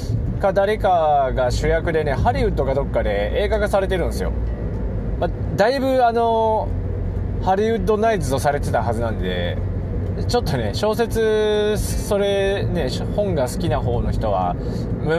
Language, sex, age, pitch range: Japanese, male, 20-39, 95-140 Hz